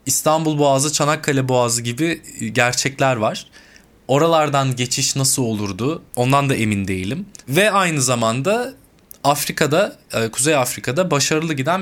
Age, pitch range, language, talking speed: 20-39, 125-160 Hz, Turkish, 115 wpm